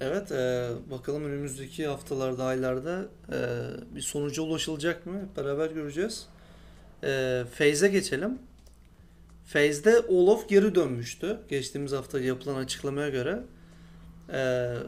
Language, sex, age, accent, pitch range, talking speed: Turkish, male, 40-59, native, 125-165 Hz, 105 wpm